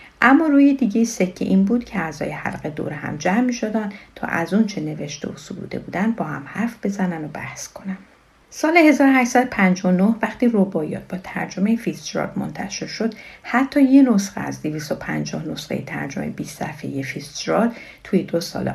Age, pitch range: 50-69, 170-235 Hz